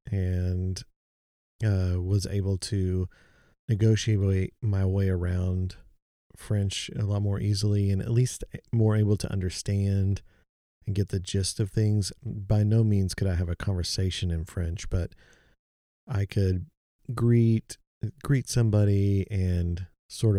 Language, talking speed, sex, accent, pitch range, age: English, 130 wpm, male, American, 90-105 Hz, 40-59